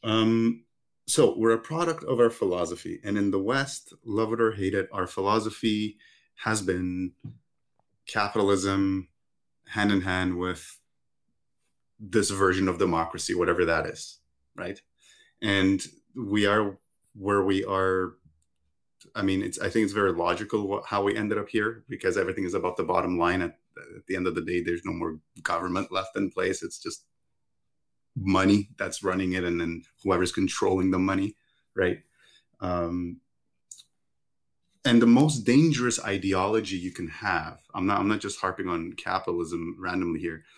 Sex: male